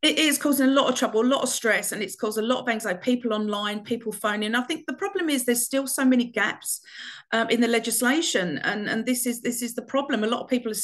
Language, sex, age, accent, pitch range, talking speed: English, female, 40-59, British, 210-255 Hz, 270 wpm